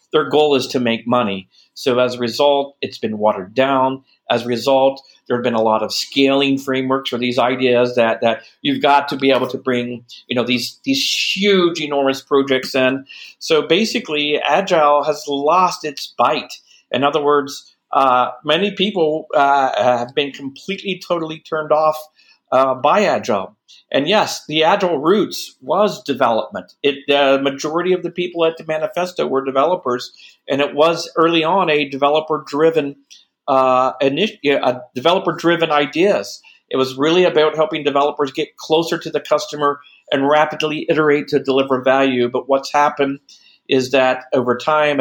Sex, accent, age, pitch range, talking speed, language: male, American, 50-69, 130-155 Hz, 165 wpm, English